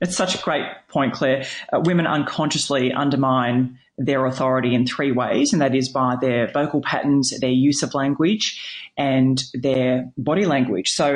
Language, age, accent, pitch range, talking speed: English, 30-49, Australian, 135-160 Hz, 165 wpm